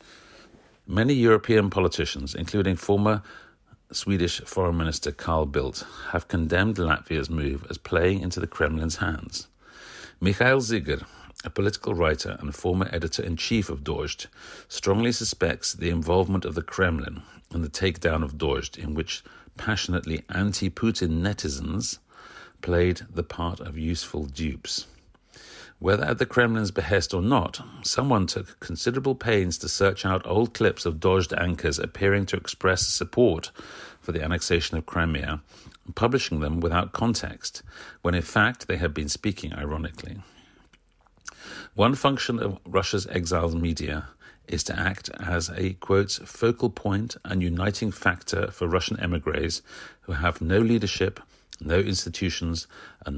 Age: 50-69